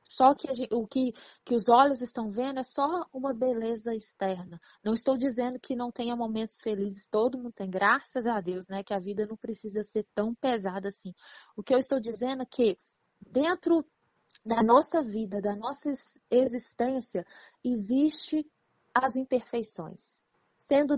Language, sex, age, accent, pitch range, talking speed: Portuguese, female, 20-39, Brazilian, 220-265 Hz, 160 wpm